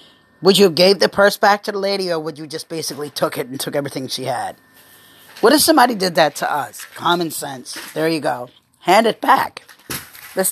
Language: English